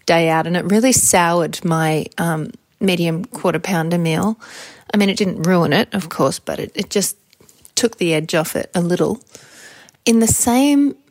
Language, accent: English, Australian